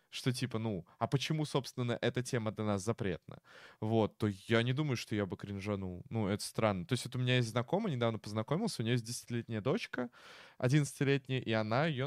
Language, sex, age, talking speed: Russian, male, 20-39, 205 wpm